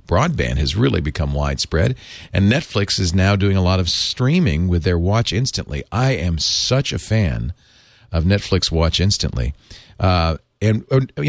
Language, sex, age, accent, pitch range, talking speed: English, male, 40-59, American, 85-120 Hz, 160 wpm